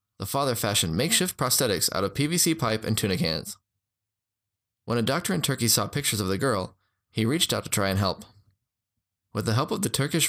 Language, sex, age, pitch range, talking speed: English, male, 20-39, 100-120 Hz, 205 wpm